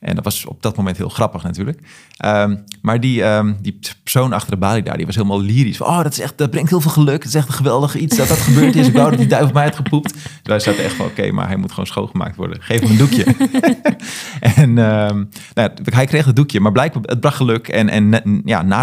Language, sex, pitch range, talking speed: Dutch, male, 95-130 Hz, 270 wpm